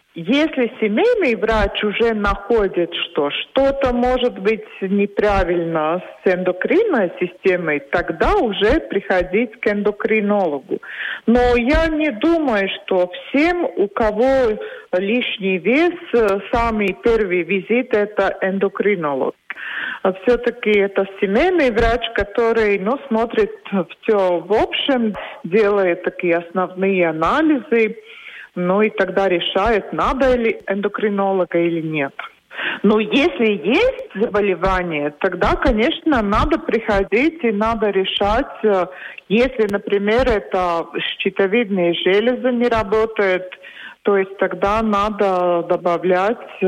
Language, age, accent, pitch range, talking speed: Russian, 50-69, native, 185-240 Hz, 105 wpm